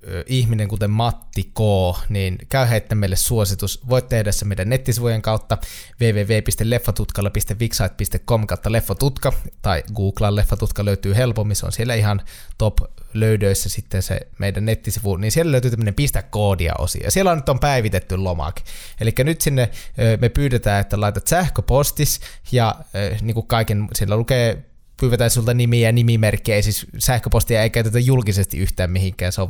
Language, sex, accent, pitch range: Finnish, male, native, 100-120 Hz